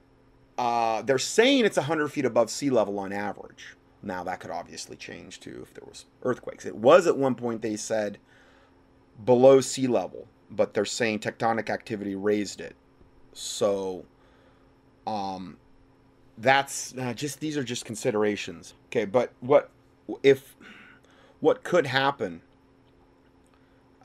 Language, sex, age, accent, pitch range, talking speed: English, male, 30-49, American, 100-135 Hz, 135 wpm